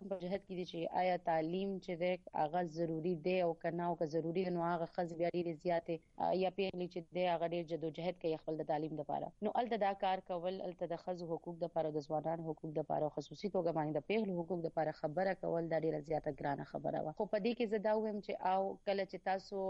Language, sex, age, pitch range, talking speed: Urdu, female, 30-49, 160-185 Hz, 215 wpm